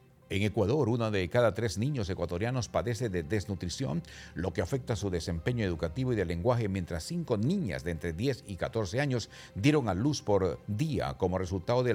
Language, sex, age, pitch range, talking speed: English, male, 50-69, 95-130 Hz, 185 wpm